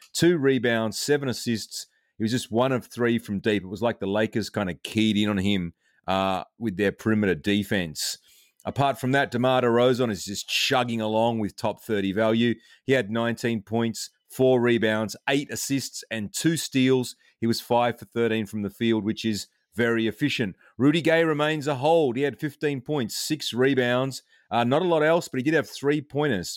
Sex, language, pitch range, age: male, English, 110-140 Hz, 30-49